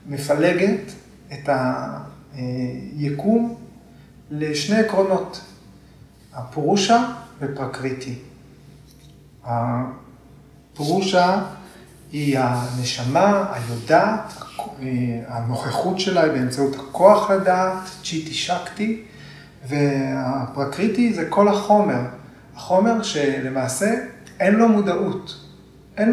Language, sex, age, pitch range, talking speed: Hebrew, male, 30-49, 135-185 Hz, 65 wpm